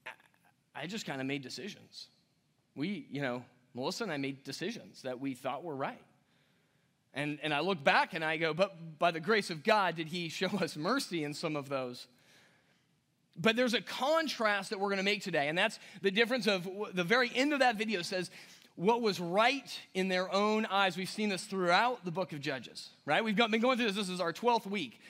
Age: 30-49